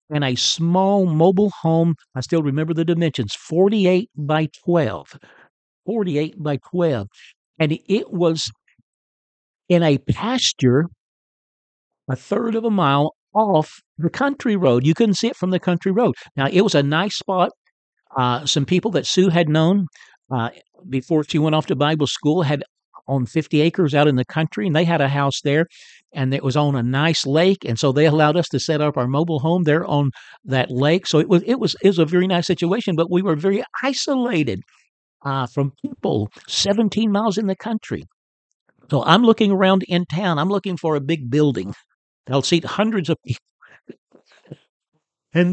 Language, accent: English, American